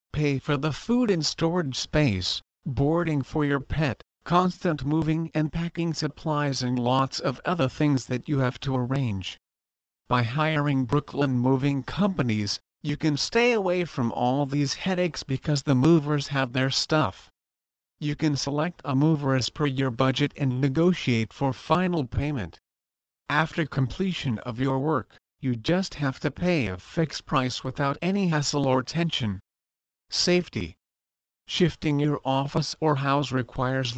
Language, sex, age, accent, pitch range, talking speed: English, male, 50-69, American, 125-155 Hz, 150 wpm